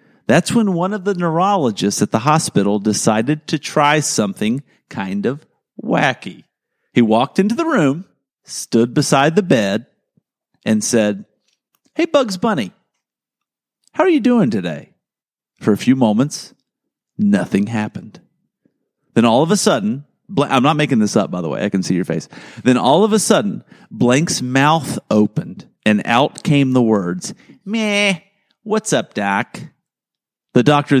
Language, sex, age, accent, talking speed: English, male, 50-69, American, 150 wpm